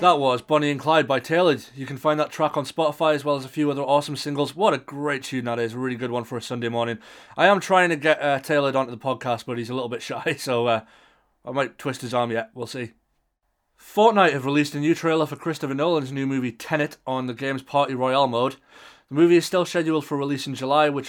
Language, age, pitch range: English, 20-39, 125-155 Hz